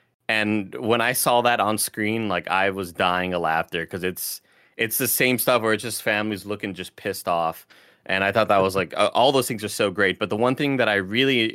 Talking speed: 240 wpm